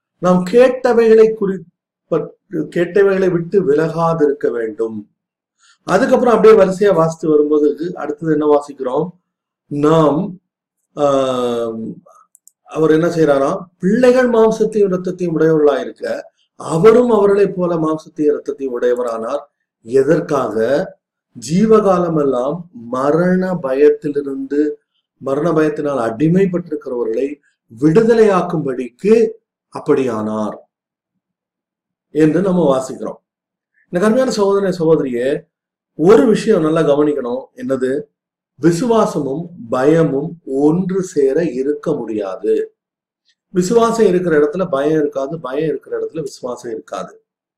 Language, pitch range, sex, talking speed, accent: Tamil, 145-205 Hz, male, 85 wpm, native